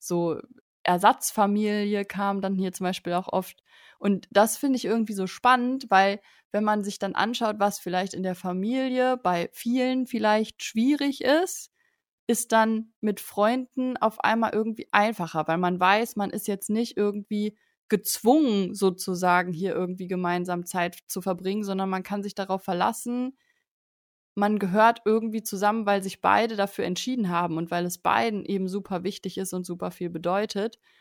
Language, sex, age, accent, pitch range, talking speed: German, female, 20-39, German, 185-215 Hz, 165 wpm